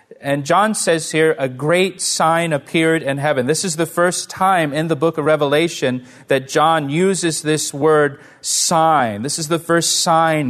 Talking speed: 175 wpm